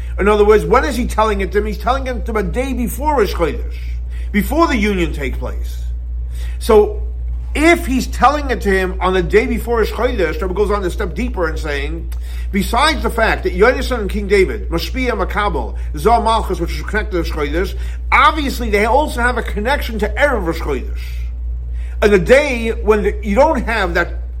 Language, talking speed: English, 195 wpm